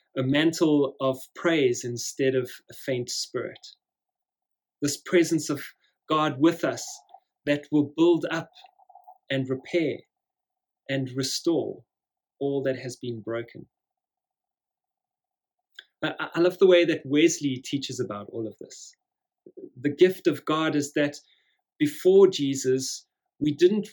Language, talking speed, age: English, 125 wpm, 30-49